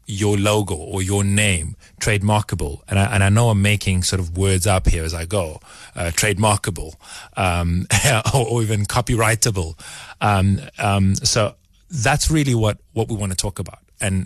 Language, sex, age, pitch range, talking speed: English, male, 30-49, 90-105 Hz, 175 wpm